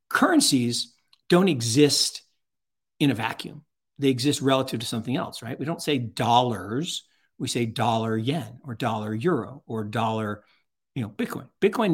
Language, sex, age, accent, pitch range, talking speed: English, male, 50-69, American, 110-140 Hz, 150 wpm